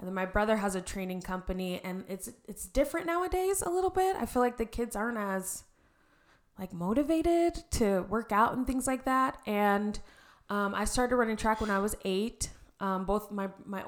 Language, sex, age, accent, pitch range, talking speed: English, female, 20-39, American, 190-225 Hz, 200 wpm